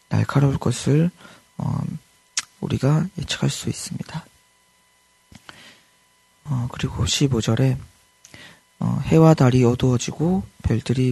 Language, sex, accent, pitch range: Korean, male, native, 120-145 Hz